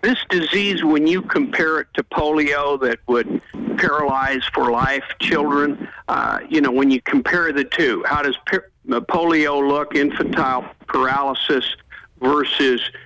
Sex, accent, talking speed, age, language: male, American, 140 wpm, 60-79, English